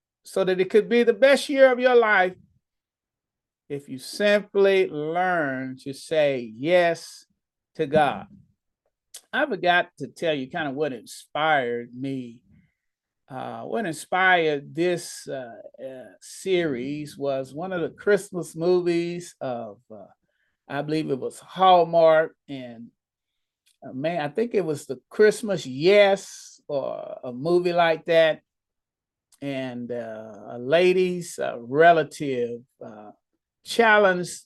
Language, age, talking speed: English, 40-59, 125 wpm